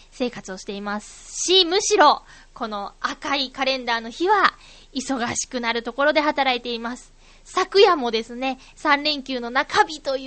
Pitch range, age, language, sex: 235-330 Hz, 20-39, Japanese, female